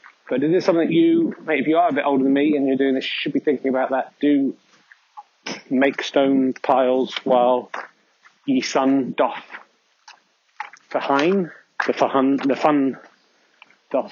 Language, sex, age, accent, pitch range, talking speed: English, male, 40-59, British, 130-150 Hz, 155 wpm